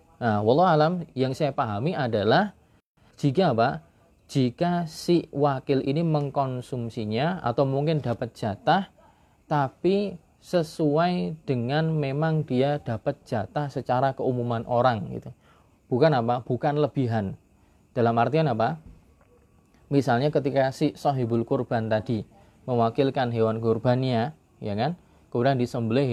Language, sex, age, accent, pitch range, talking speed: Indonesian, male, 20-39, native, 115-155 Hz, 115 wpm